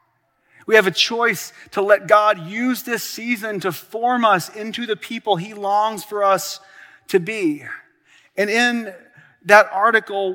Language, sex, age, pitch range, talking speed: English, male, 30-49, 175-225 Hz, 150 wpm